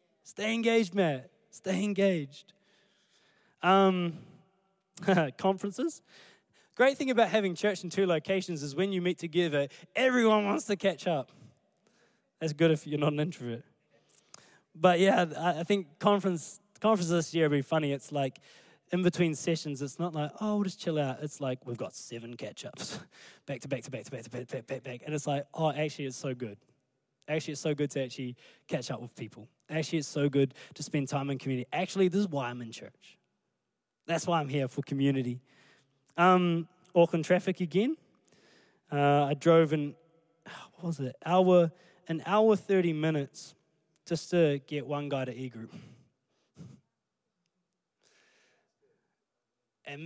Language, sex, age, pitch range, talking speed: English, male, 20-39, 140-190 Hz, 170 wpm